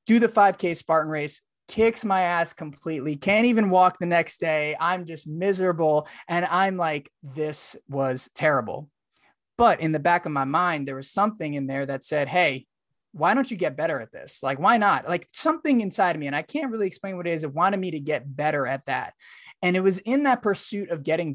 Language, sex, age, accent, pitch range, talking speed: English, male, 20-39, American, 145-180 Hz, 220 wpm